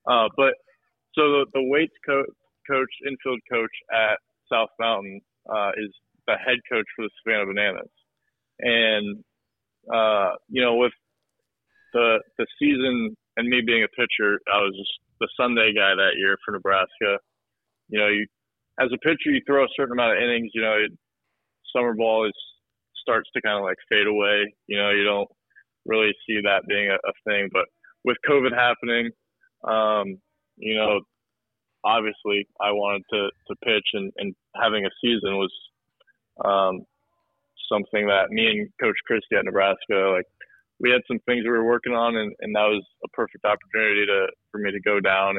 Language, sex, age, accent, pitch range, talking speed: English, male, 20-39, American, 100-130 Hz, 175 wpm